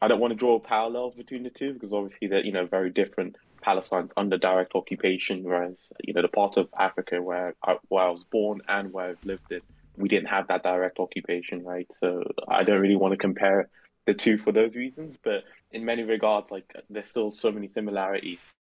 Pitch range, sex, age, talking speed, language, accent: 95-105 Hz, male, 20-39, 215 wpm, English, British